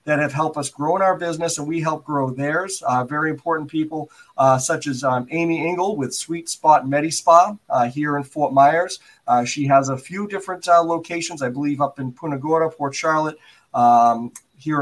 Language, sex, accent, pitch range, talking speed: English, male, American, 135-165 Hz, 205 wpm